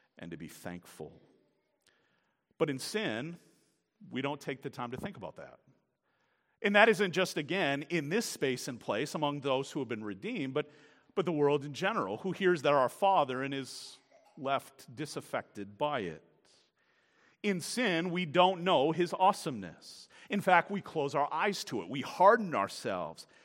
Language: English